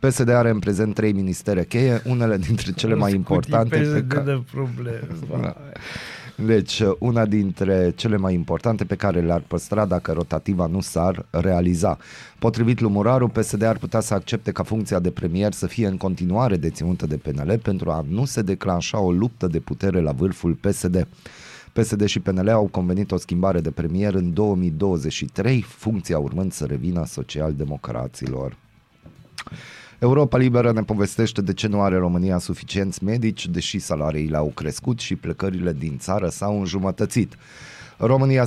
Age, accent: 30-49, native